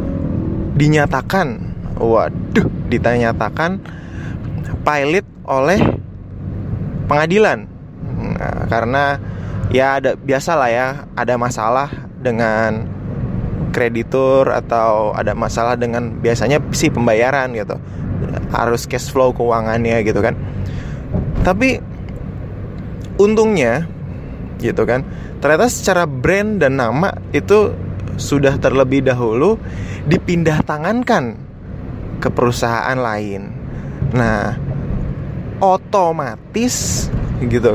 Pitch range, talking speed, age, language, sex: 115-145 Hz, 80 wpm, 20-39, Indonesian, male